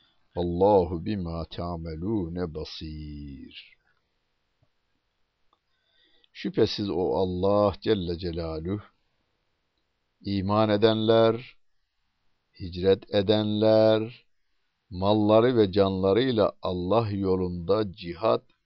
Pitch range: 85-115 Hz